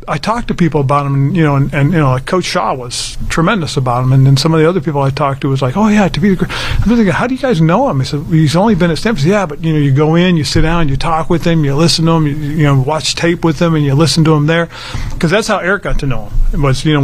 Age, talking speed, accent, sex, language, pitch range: 40-59, 335 wpm, American, male, English, 135-155 Hz